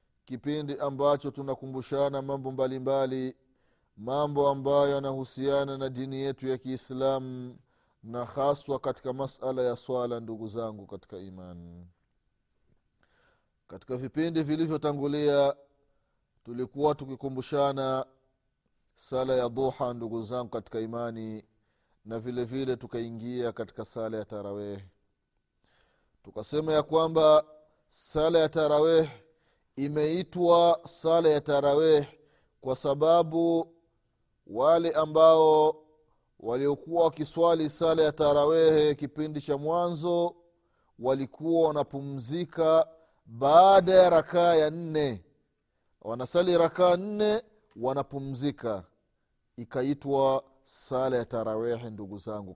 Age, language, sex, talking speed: 30-49, Swahili, male, 95 wpm